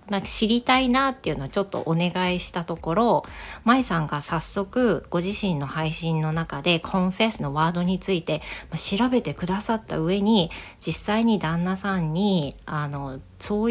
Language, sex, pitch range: Japanese, female, 155-205 Hz